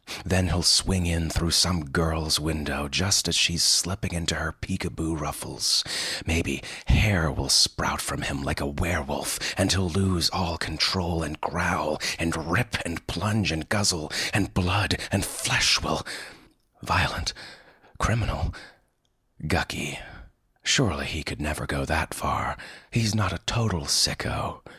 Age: 30-49